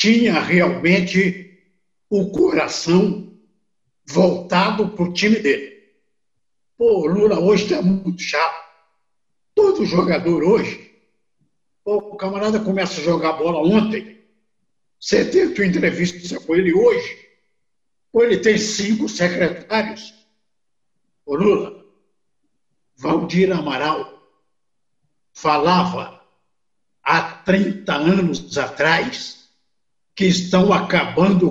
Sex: male